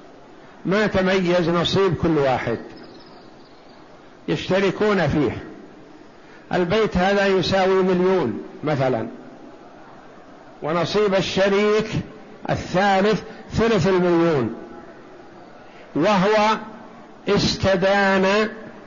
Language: Arabic